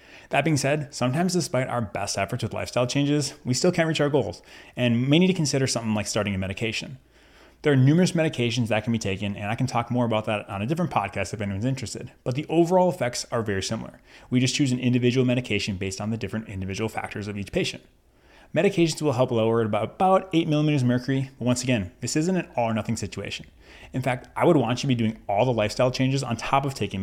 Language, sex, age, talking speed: English, male, 20-39, 235 wpm